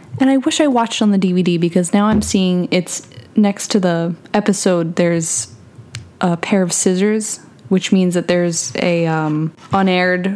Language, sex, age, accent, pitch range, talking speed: English, female, 20-39, American, 175-210 Hz, 160 wpm